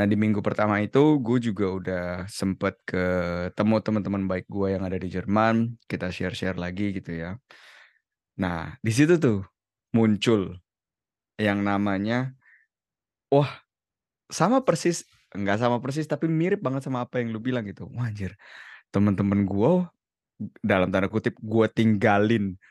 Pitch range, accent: 95-125 Hz, native